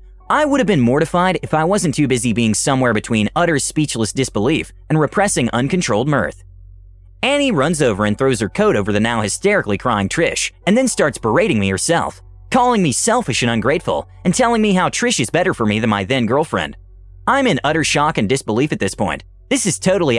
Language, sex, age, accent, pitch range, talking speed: English, male, 30-49, American, 105-170 Hz, 205 wpm